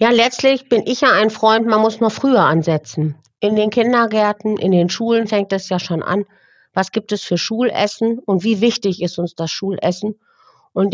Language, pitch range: German, 190-235 Hz